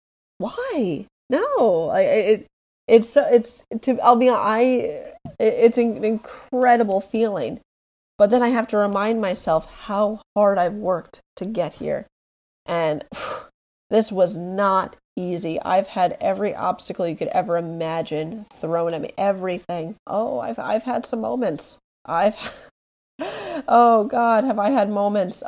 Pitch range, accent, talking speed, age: 170-215 Hz, American, 140 wpm, 30-49